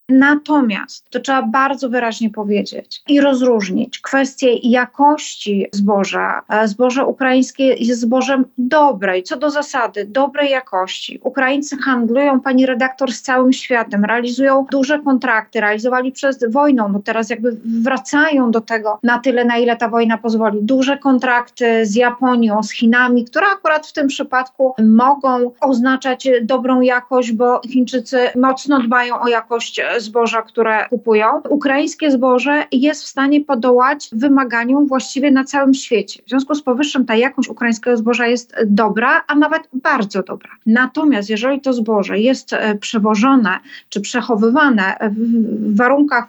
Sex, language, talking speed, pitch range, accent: female, Polish, 135 wpm, 230-275 Hz, native